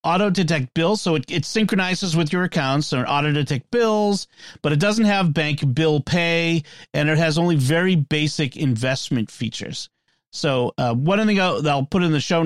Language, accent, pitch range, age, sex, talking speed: English, American, 130-170 Hz, 40-59, male, 195 wpm